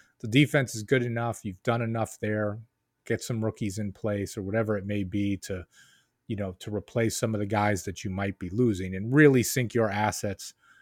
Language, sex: English, male